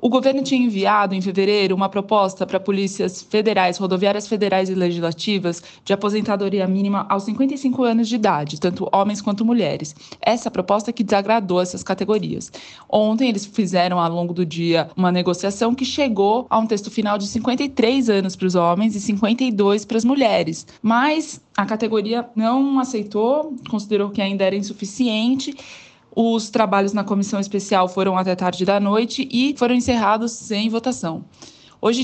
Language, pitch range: Portuguese, 185-230 Hz